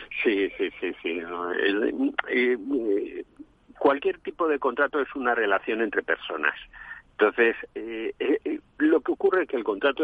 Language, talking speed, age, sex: Spanish, 155 wpm, 50-69, male